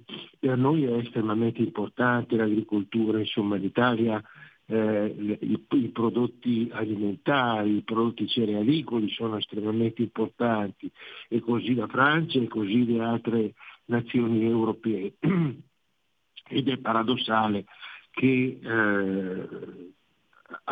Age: 60-79